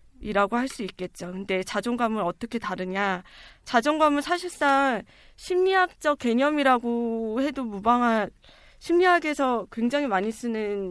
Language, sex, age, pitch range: Korean, female, 20-39, 220-285 Hz